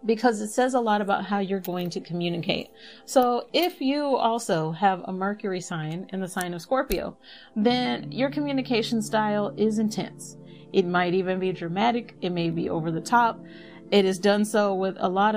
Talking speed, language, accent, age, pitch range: 185 wpm, English, American, 30-49, 180-225 Hz